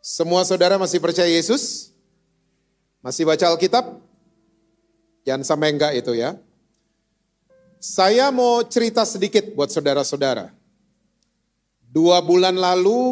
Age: 40-59